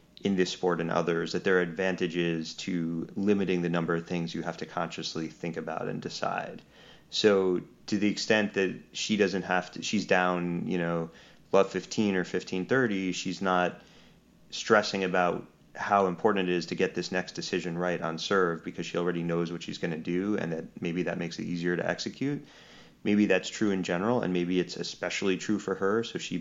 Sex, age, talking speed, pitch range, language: male, 30-49, 200 wpm, 85-95 Hz, English